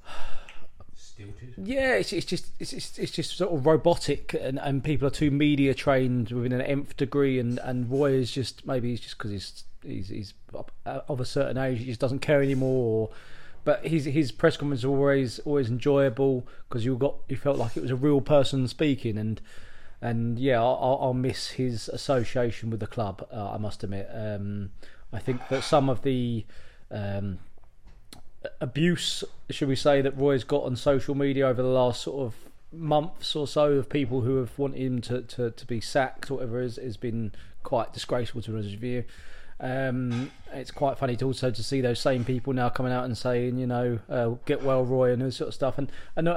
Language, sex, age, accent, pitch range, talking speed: English, male, 20-39, British, 115-140 Hz, 200 wpm